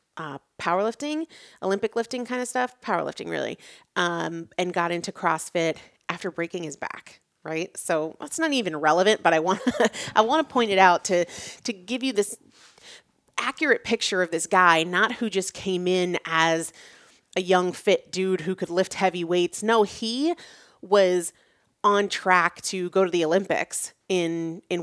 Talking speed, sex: 175 wpm, female